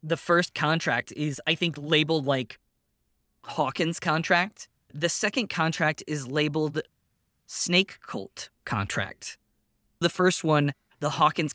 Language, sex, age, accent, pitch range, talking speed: English, male, 20-39, American, 135-160 Hz, 120 wpm